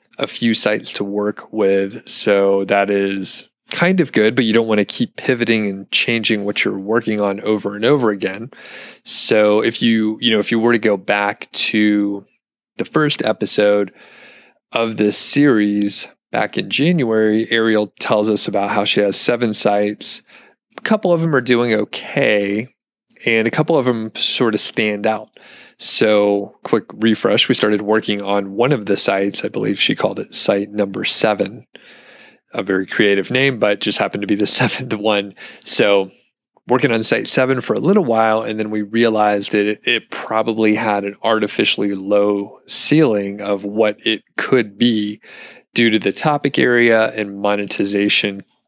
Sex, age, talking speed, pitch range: male, 30-49, 170 wpm, 100-115 Hz